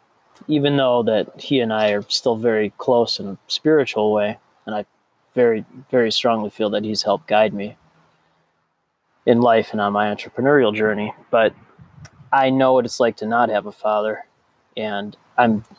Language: English